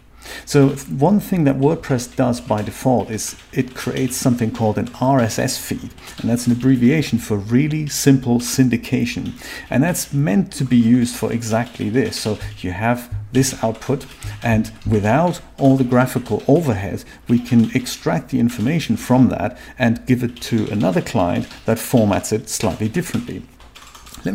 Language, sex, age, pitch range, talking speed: English, male, 50-69, 105-130 Hz, 155 wpm